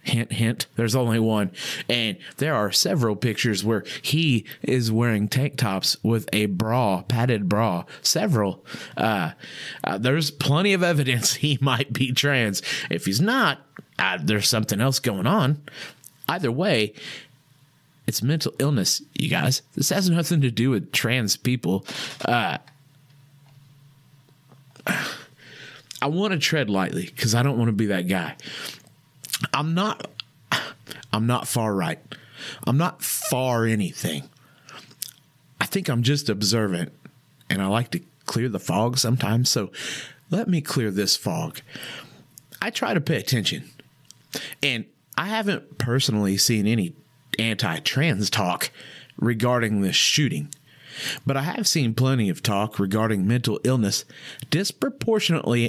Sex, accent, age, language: male, American, 30-49, English